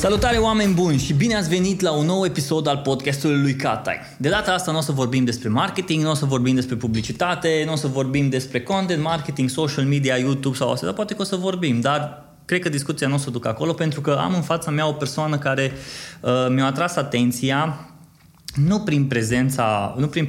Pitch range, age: 120-155 Hz, 20-39